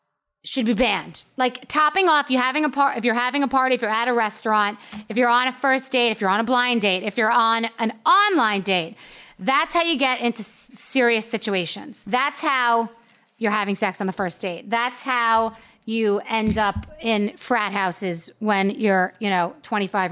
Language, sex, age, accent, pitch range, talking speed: English, female, 30-49, American, 195-240 Hz, 205 wpm